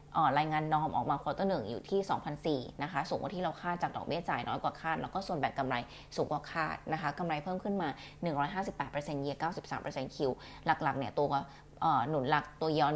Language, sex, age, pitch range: Thai, female, 20-39, 145-160 Hz